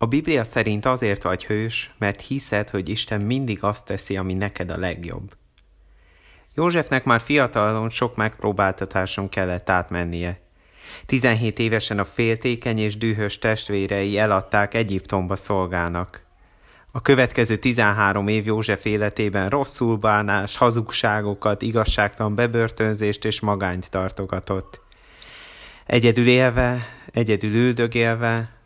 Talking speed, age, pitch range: 110 wpm, 30-49, 100-120 Hz